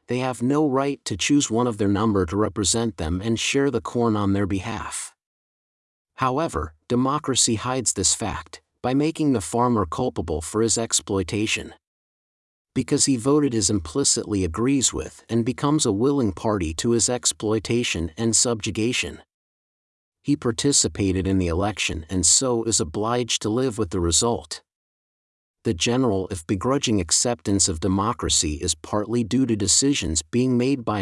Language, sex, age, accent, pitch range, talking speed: English, male, 50-69, American, 95-125 Hz, 155 wpm